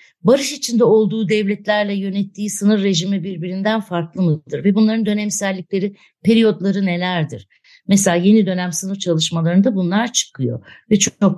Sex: female